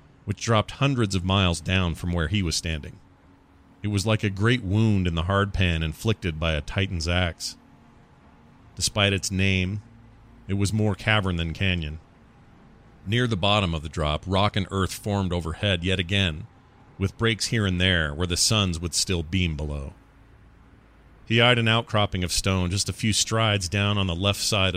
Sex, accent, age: male, American, 40-59